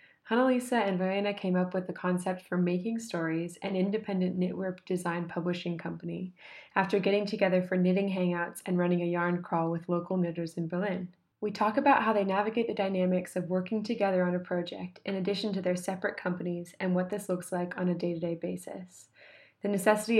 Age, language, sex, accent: 20-39, English, female, American